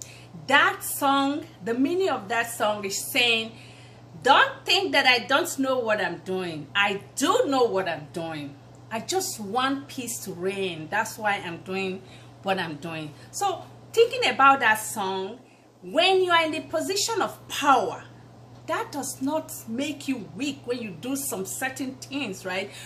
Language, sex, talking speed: English, female, 165 wpm